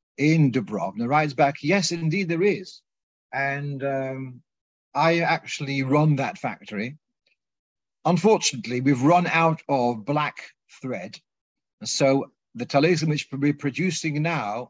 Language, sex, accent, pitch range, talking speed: English, male, British, 125-160 Hz, 125 wpm